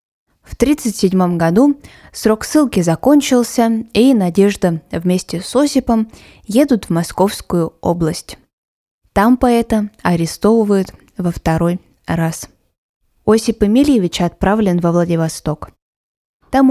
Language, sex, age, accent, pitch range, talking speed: Russian, female, 20-39, native, 175-220 Hz, 95 wpm